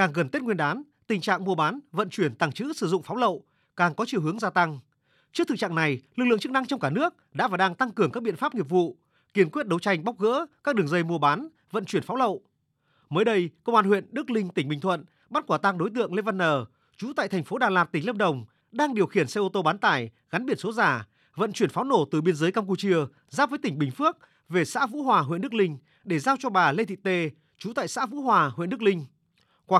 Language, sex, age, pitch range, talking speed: Vietnamese, male, 30-49, 165-235 Hz, 270 wpm